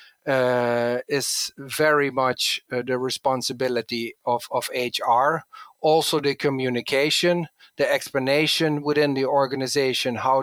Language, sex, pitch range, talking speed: English, male, 120-145 Hz, 110 wpm